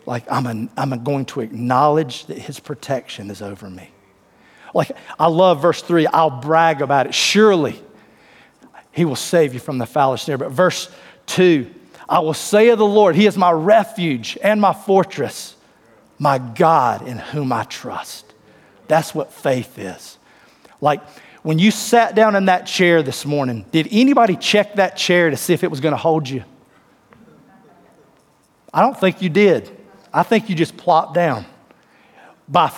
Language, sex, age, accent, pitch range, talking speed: English, male, 40-59, American, 145-200 Hz, 170 wpm